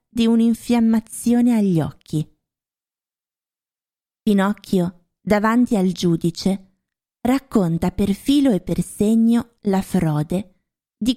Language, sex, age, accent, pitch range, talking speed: Italian, female, 20-39, native, 180-235 Hz, 90 wpm